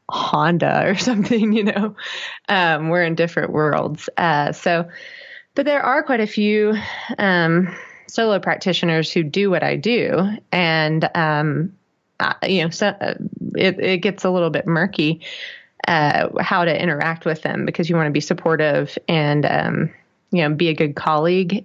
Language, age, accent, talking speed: English, 20-39, American, 160 wpm